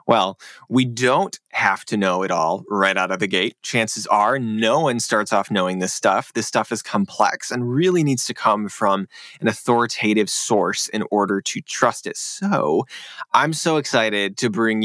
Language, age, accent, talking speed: English, 20-39, American, 185 wpm